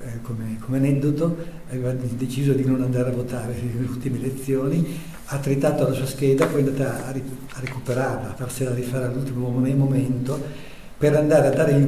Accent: native